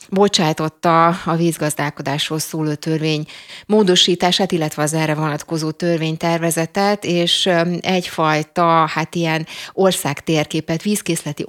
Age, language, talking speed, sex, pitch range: 30-49, Hungarian, 90 wpm, female, 155-180 Hz